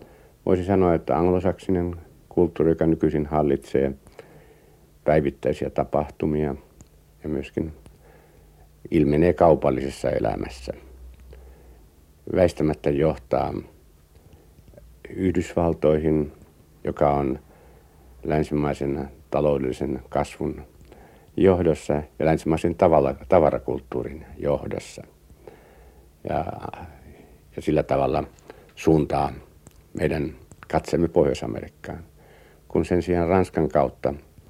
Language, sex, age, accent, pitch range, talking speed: Finnish, male, 60-79, native, 70-85 Hz, 70 wpm